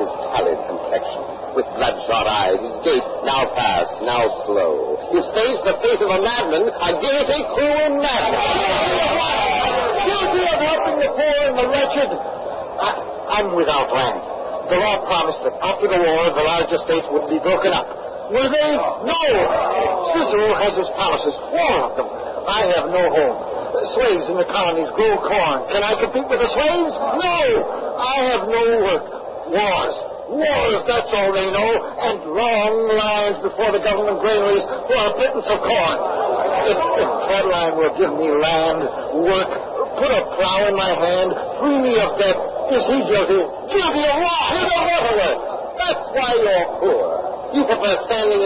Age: 60-79